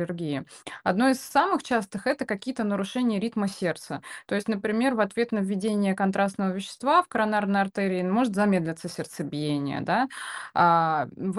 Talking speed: 150 wpm